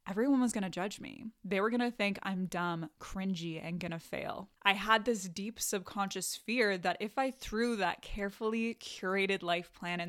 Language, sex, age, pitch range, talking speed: English, female, 10-29, 185-225 Hz, 185 wpm